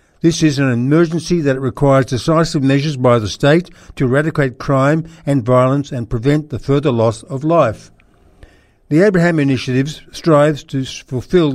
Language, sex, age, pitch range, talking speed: English, male, 60-79, 125-150 Hz, 150 wpm